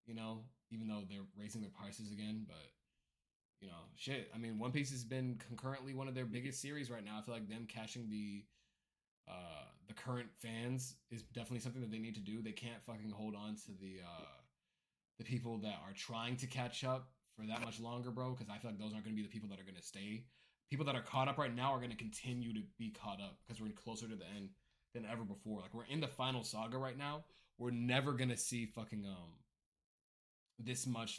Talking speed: 235 wpm